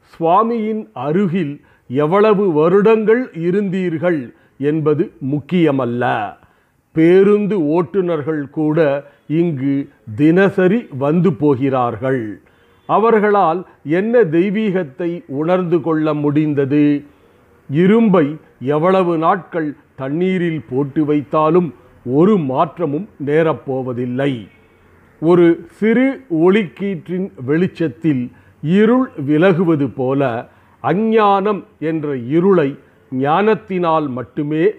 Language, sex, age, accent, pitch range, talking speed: Tamil, male, 40-59, native, 140-185 Hz, 70 wpm